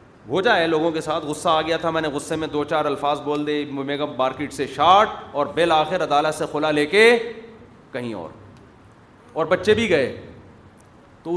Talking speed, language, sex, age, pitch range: 195 wpm, Urdu, male, 40-59, 125-165 Hz